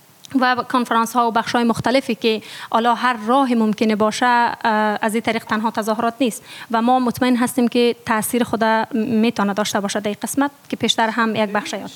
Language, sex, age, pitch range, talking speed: German, female, 30-49, 225-250 Hz, 185 wpm